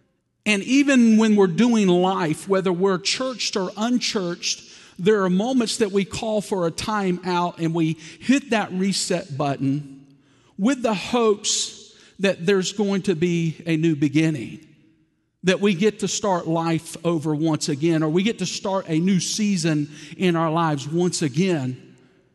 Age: 50-69